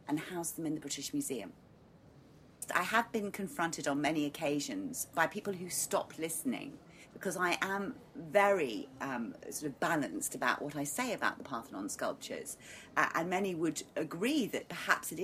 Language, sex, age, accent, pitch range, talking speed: English, female, 40-59, British, 150-200 Hz, 170 wpm